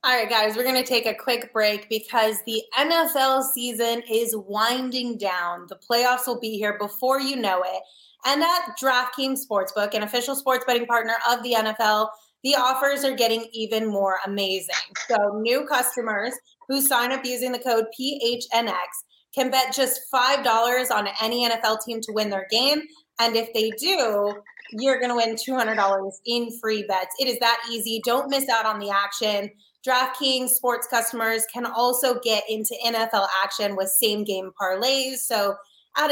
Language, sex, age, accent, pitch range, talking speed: English, female, 20-39, American, 220-260 Hz, 170 wpm